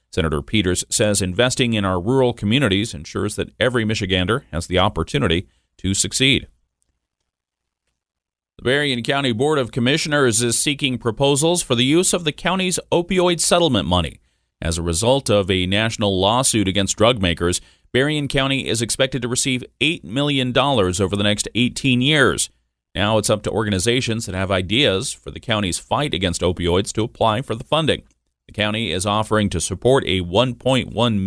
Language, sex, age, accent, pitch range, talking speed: English, male, 40-59, American, 95-130 Hz, 165 wpm